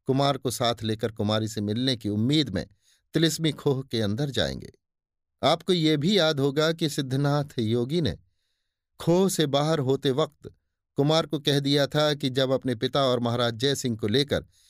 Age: 50-69